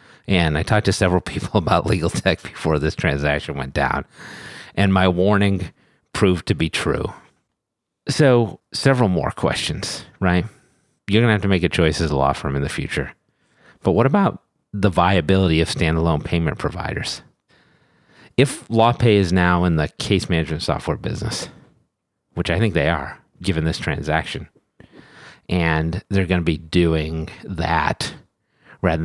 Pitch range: 80-100 Hz